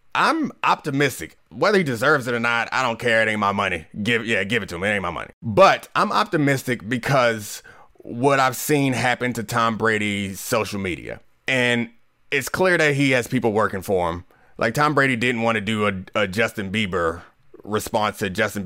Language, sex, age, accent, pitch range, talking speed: English, male, 30-49, American, 105-150 Hz, 200 wpm